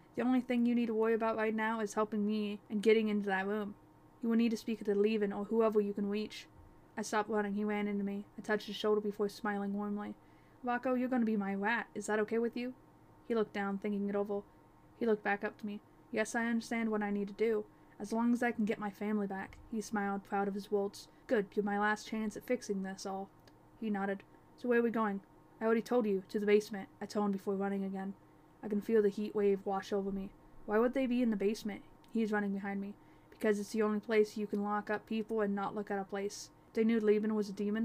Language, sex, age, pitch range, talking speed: English, female, 10-29, 200-220 Hz, 260 wpm